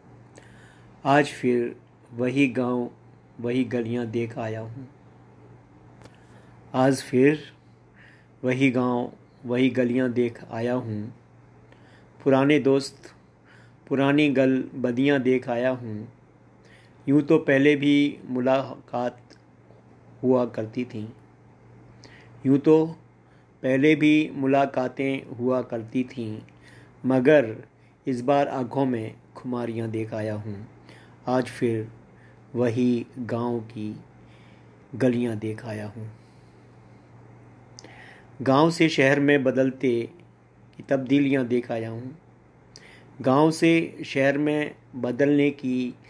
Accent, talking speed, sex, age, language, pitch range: native, 100 wpm, male, 50-69, Hindi, 115-140 Hz